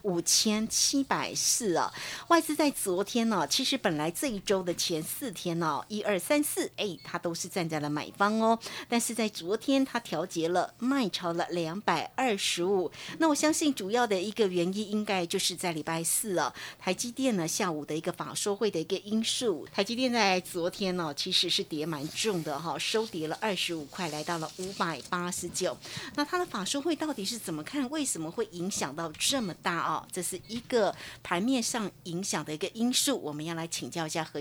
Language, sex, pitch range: Chinese, female, 175-255 Hz